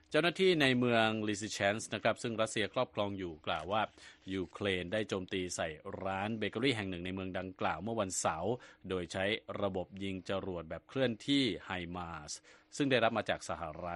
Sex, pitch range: male, 95-120 Hz